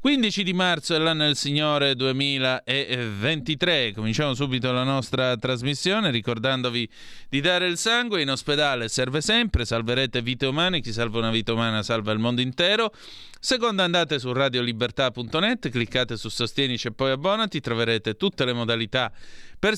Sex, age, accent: male, 30-49, native